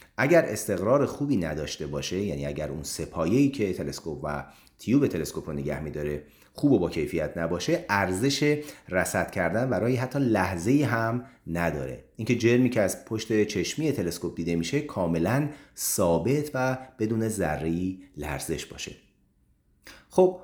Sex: male